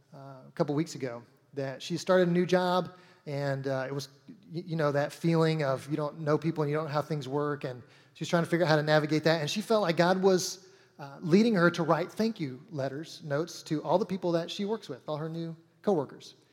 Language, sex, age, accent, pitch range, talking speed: English, male, 30-49, American, 155-195 Hz, 250 wpm